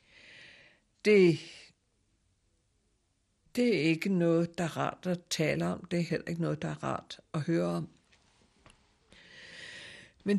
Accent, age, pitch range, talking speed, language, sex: native, 60-79, 130-175 Hz, 135 wpm, Danish, female